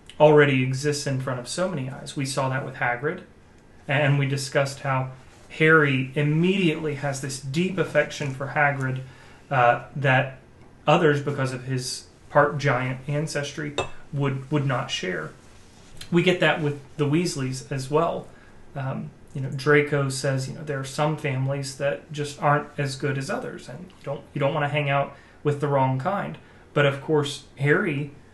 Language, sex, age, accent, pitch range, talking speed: English, male, 30-49, American, 130-150 Hz, 170 wpm